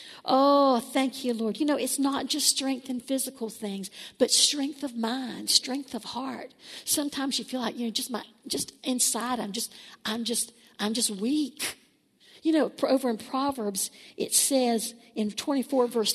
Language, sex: English, female